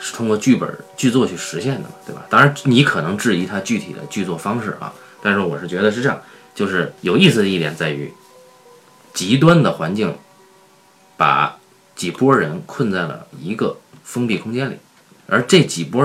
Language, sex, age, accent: Chinese, male, 30-49, native